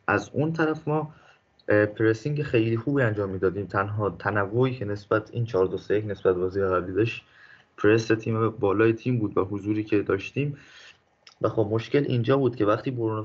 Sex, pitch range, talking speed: male, 100-125 Hz, 170 wpm